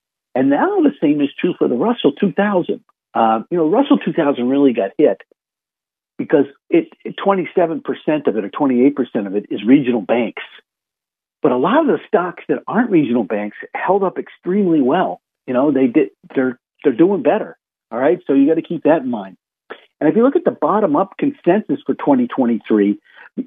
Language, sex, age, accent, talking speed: English, male, 50-69, American, 190 wpm